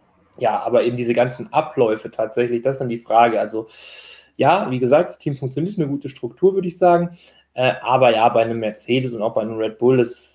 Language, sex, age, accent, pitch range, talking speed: German, male, 20-39, German, 115-135 Hz, 220 wpm